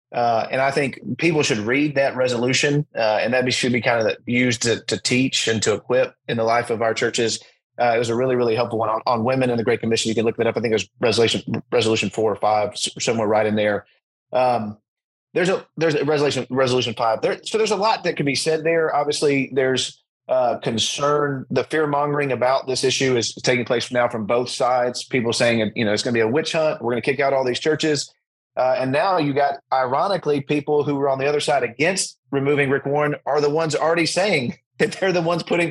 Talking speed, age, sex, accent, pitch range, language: 240 wpm, 30-49, male, American, 115-145 Hz, English